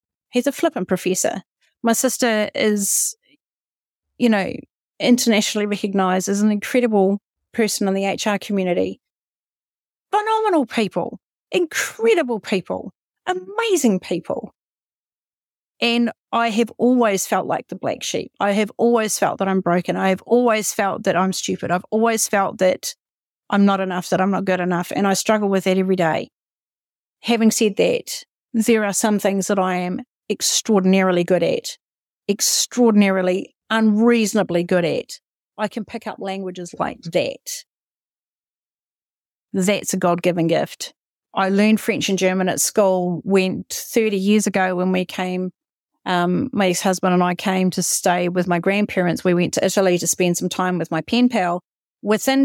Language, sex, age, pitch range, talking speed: English, female, 40-59, 185-230 Hz, 150 wpm